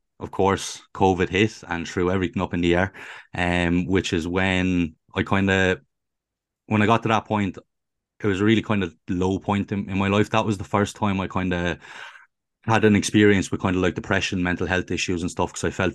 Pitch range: 90-105 Hz